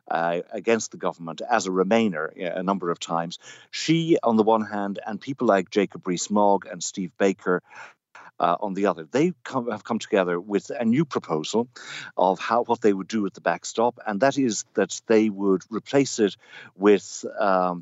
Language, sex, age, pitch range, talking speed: English, male, 50-69, 90-115 Hz, 180 wpm